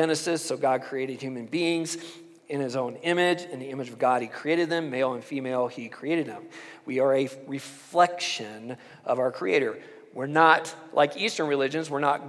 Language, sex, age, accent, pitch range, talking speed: English, male, 40-59, American, 135-170 Hz, 185 wpm